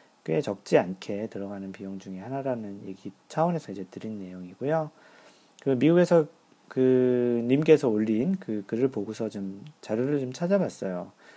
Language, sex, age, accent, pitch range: Korean, male, 40-59, native, 105-155 Hz